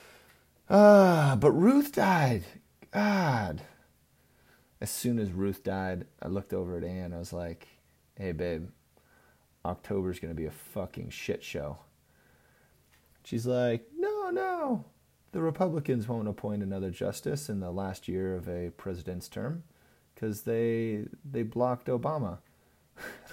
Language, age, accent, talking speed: English, 30-49, American, 135 wpm